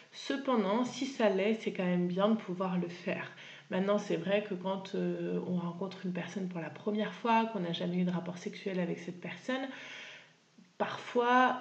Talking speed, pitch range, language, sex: 190 wpm, 185-220 Hz, French, female